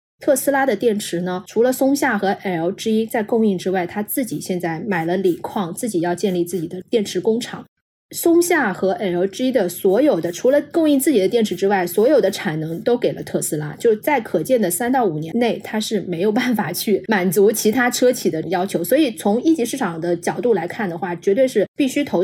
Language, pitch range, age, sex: Chinese, 180-250 Hz, 20-39, female